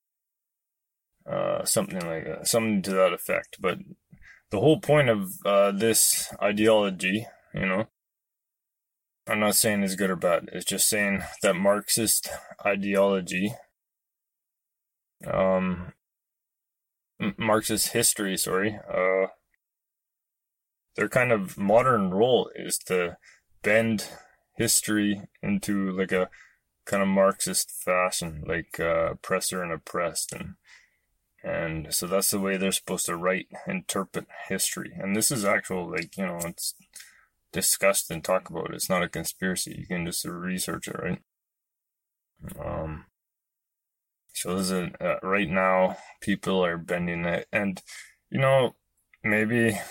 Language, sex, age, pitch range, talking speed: English, male, 20-39, 90-105 Hz, 125 wpm